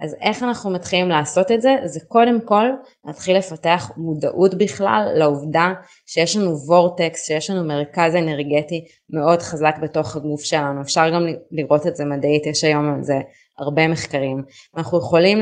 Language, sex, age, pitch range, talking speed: Hebrew, female, 20-39, 155-190 Hz, 160 wpm